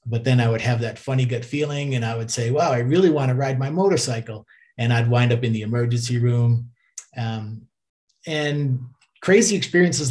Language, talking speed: English, 195 wpm